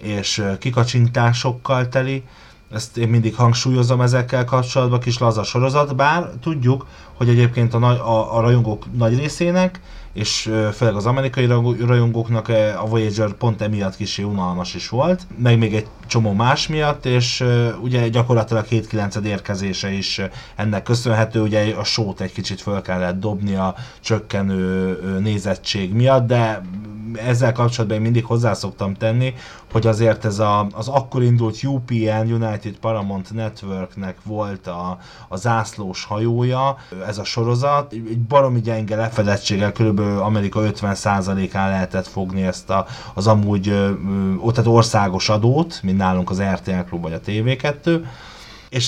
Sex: male